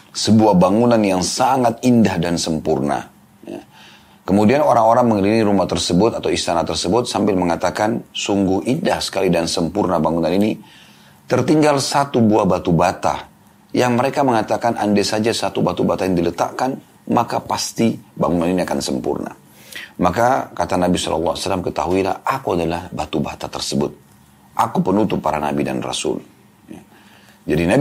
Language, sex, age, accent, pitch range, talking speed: Indonesian, male, 30-49, native, 85-110 Hz, 140 wpm